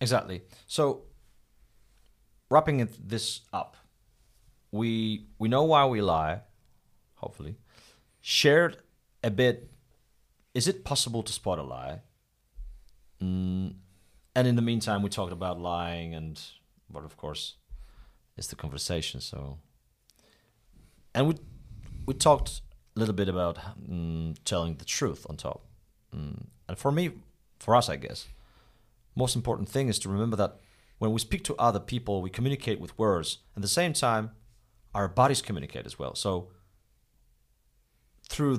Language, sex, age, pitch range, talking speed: English, male, 30-49, 95-120 Hz, 140 wpm